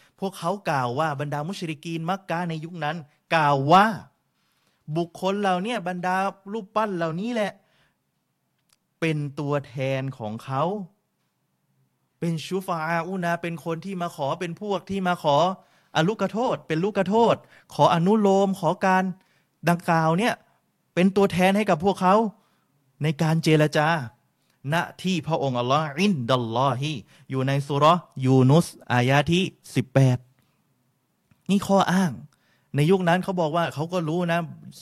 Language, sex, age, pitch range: Thai, male, 20-39, 135-185 Hz